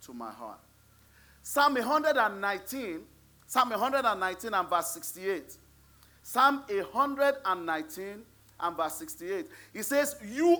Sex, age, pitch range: male, 40-59, 200-310 Hz